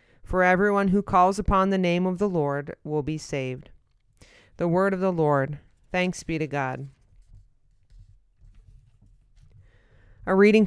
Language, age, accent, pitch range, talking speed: English, 30-49, American, 155-195 Hz, 135 wpm